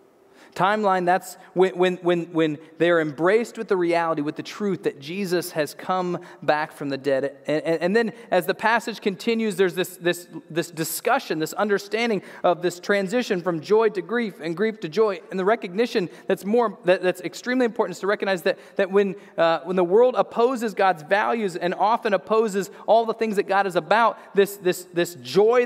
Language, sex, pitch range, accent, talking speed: English, male, 175-220 Hz, American, 195 wpm